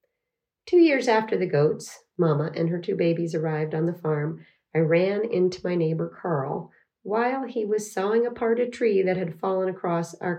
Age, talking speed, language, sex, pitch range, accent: 40-59, 185 wpm, English, female, 155-195 Hz, American